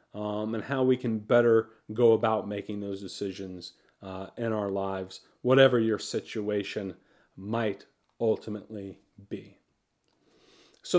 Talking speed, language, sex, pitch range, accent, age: 120 wpm, English, male, 115-150 Hz, American, 40-59